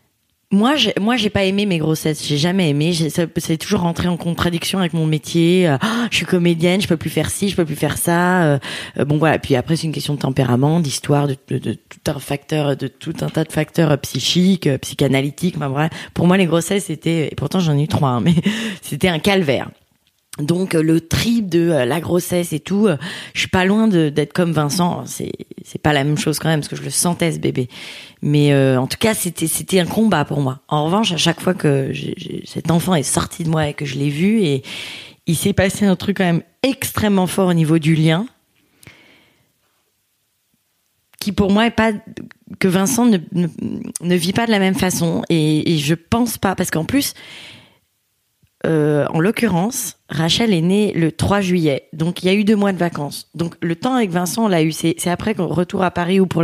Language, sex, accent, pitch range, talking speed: French, female, French, 150-190 Hz, 235 wpm